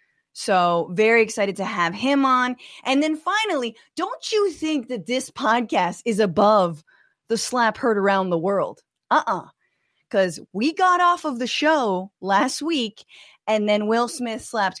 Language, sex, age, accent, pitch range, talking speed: English, female, 20-39, American, 195-290 Hz, 165 wpm